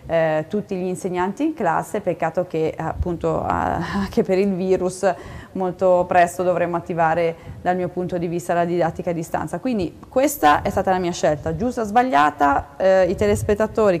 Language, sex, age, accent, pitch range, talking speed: Italian, female, 20-39, native, 170-195 Hz, 170 wpm